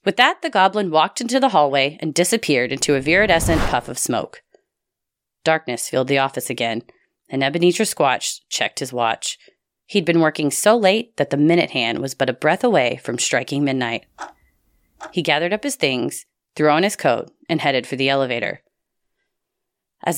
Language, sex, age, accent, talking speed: English, female, 30-49, American, 175 wpm